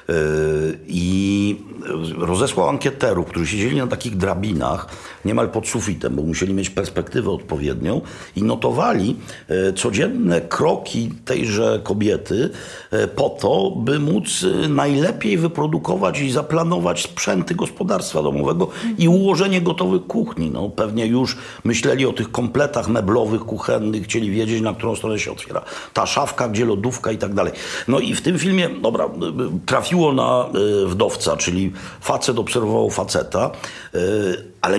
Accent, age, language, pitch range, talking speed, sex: native, 50-69, Polish, 95-135 Hz, 130 wpm, male